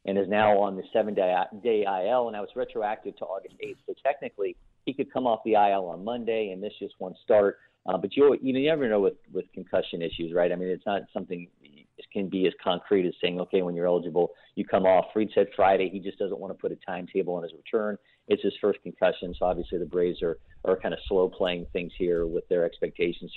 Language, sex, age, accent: English, male, 50-69, American